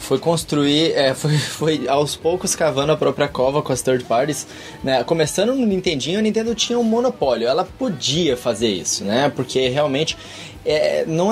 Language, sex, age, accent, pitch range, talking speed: Portuguese, male, 20-39, Brazilian, 130-190 Hz, 165 wpm